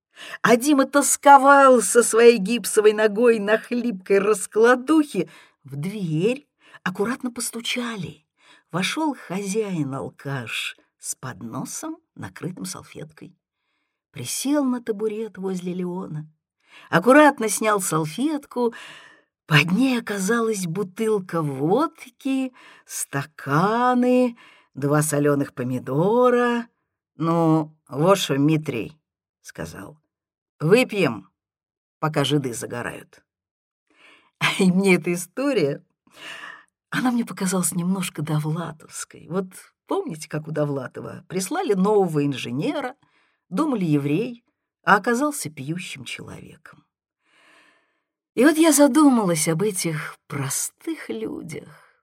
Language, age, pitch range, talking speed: Russian, 50-69, 155-245 Hz, 90 wpm